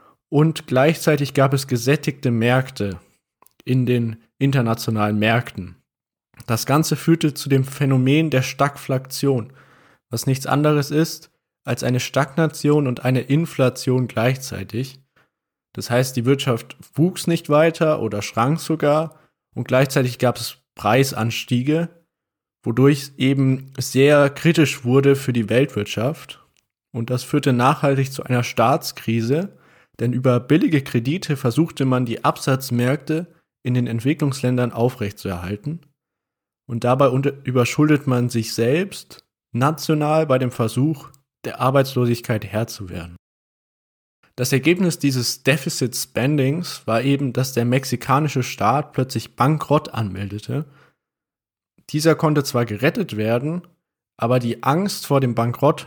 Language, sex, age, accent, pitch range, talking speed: German, male, 20-39, German, 120-150 Hz, 120 wpm